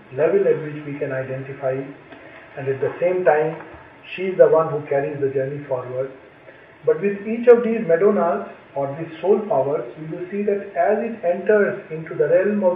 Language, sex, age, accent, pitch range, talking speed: English, male, 50-69, Indian, 145-205 Hz, 195 wpm